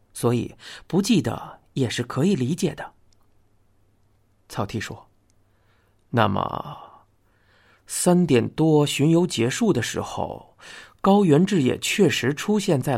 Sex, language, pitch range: male, Chinese, 100-155 Hz